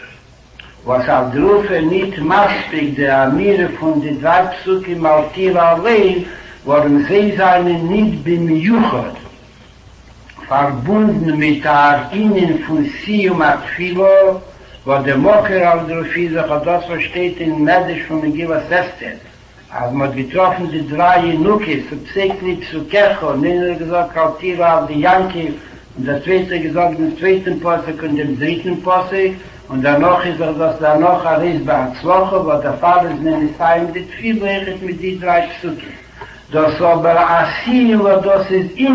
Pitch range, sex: 155-195 Hz, male